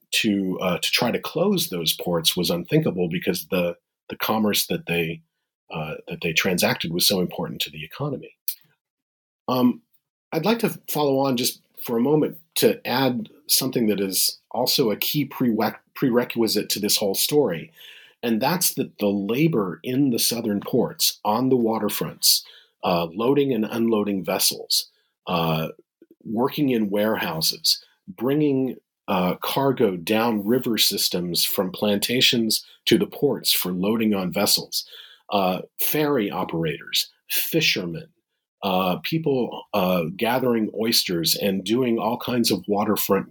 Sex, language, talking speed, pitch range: male, English, 140 wpm, 100-135 Hz